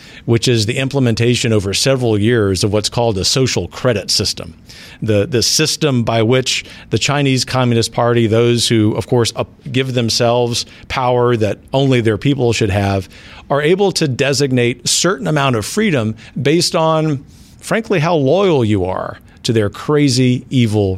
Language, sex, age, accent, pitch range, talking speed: English, male, 50-69, American, 105-135 Hz, 165 wpm